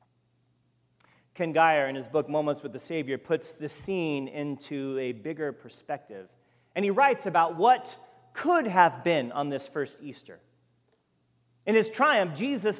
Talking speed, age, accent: 150 wpm, 40-59, American